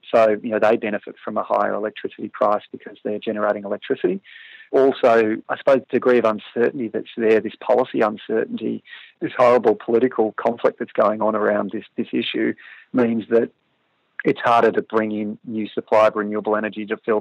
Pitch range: 105-115 Hz